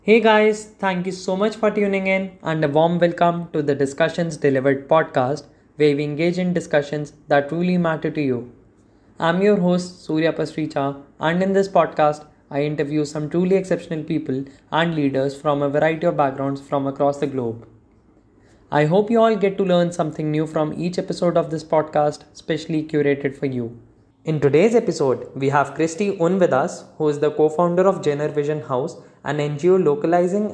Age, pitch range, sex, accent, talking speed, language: 20-39, 140-170 Hz, male, Indian, 185 wpm, English